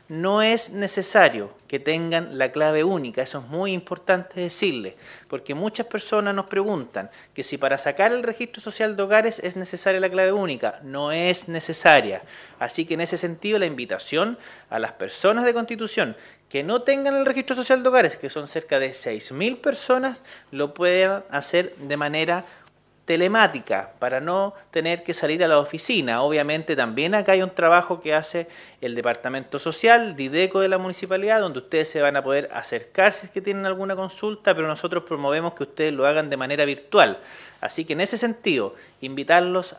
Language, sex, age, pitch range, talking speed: Spanish, male, 30-49, 145-210 Hz, 180 wpm